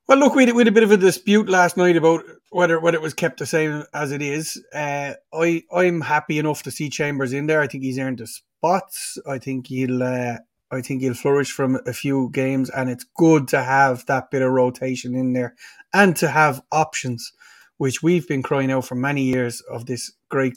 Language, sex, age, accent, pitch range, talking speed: English, male, 30-49, Irish, 130-155 Hz, 215 wpm